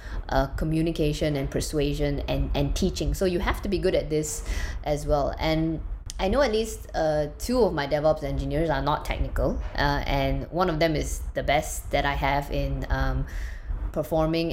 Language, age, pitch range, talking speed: English, 20-39, 140-170 Hz, 185 wpm